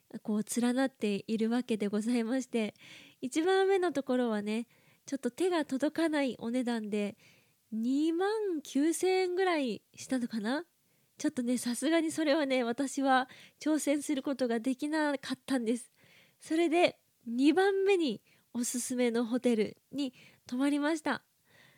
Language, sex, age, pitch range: Japanese, female, 20-39, 225-285 Hz